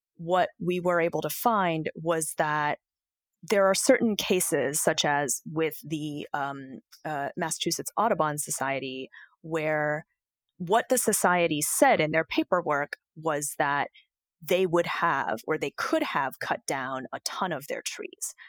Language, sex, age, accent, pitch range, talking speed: English, female, 20-39, American, 150-185 Hz, 145 wpm